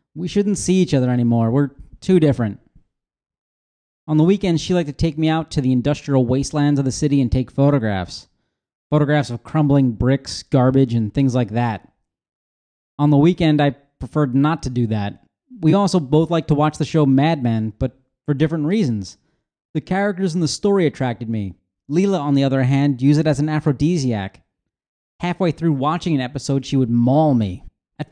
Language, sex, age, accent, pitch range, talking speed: English, male, 30-49, American, 120-160 Hz, 185 wpm